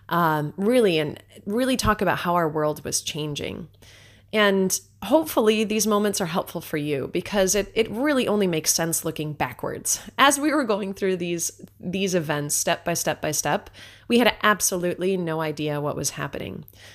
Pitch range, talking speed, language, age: 150-195 Hz, 160 wpm, English, 20-39